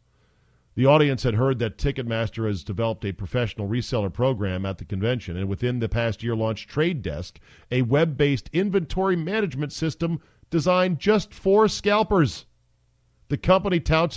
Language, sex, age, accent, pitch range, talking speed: English, male, 50-69, American, 110-150 Hz, 155 wpm